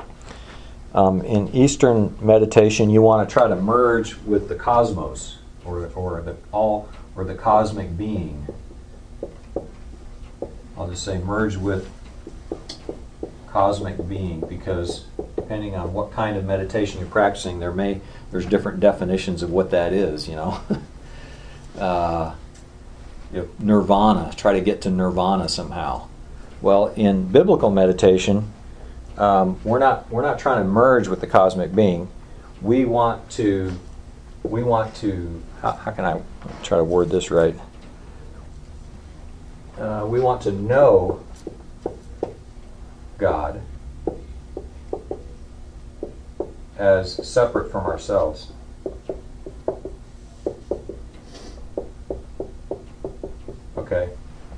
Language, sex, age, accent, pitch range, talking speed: English, male, 50-69, American, 80-105 Hz, 110 wpm